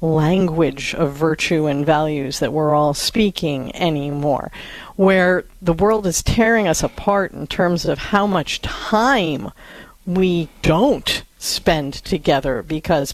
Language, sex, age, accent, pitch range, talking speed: English, female, 50-69, American, 165-220 Hz, 130 wpm